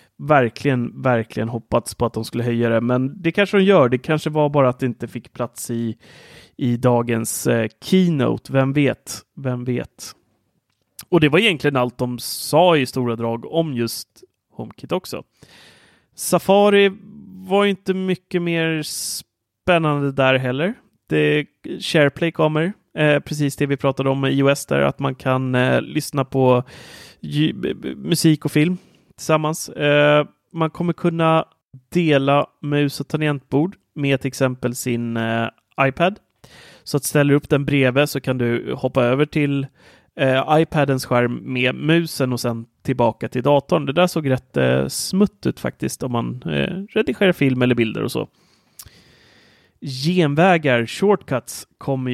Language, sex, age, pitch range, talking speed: Swedish, male, 30-49, 125-160 Hz, 155 wpm